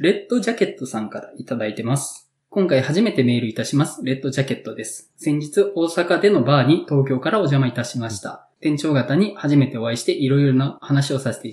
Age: 20-39